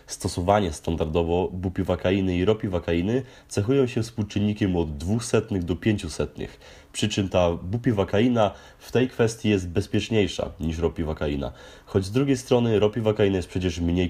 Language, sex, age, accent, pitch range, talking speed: Polish, male, 30-49, native, 85-110 Hz, 130 wpm